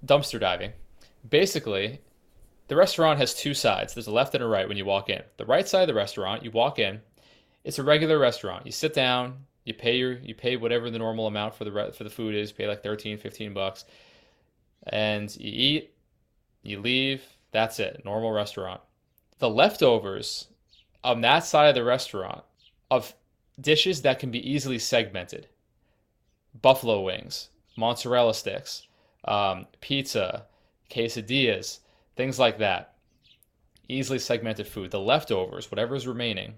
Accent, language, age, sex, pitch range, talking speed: American, English, 20-39, male, 105-130 Hz, 155 wpm